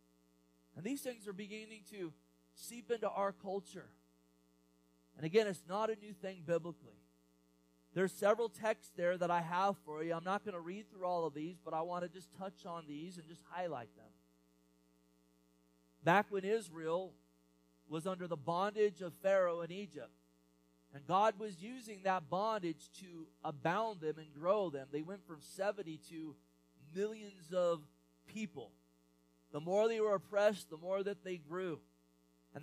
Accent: American